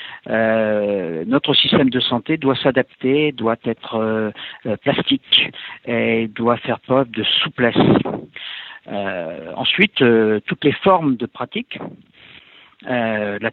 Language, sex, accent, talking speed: French, male, French, 115 wpm